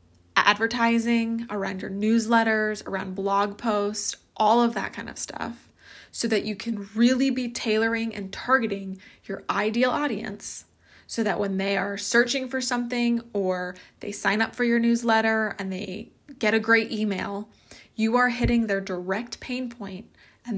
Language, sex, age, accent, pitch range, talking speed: English, female, 20-39, American, 200-230 Hz, 155 wpm